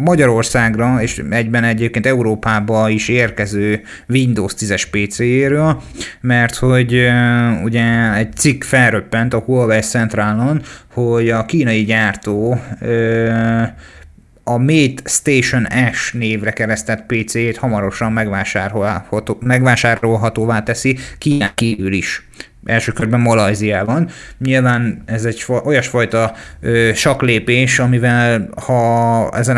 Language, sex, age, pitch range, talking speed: Hungarian, male, 30-49, 110-125 Hz, 95 wpm